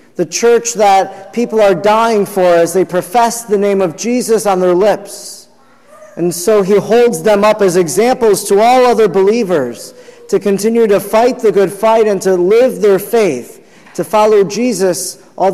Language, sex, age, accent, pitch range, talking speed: English, male, 40-59, American, 190-230 Hz, 175 wpm